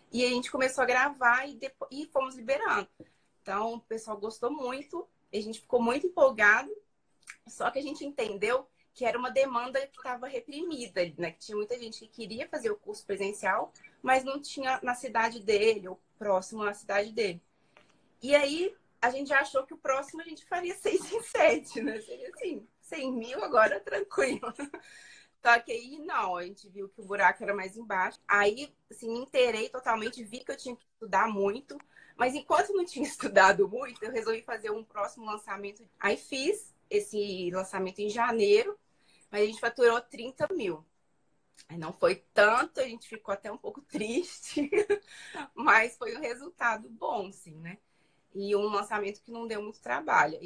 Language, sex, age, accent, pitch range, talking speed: Portuguese, female, 20-39, Brazilian, 210-290 Hz, 180 wpm